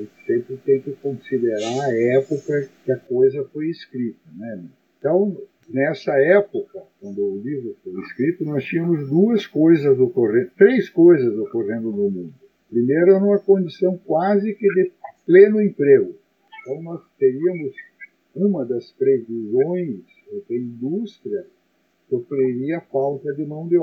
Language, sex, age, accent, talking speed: Portuguese, male, 60-79, Brazilian, 140 wpm